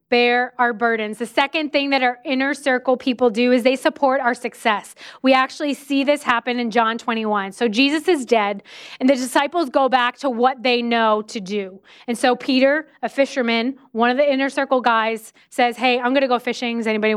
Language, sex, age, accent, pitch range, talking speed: English, female, 20-39, American, 230-270 Hz, 210 wpm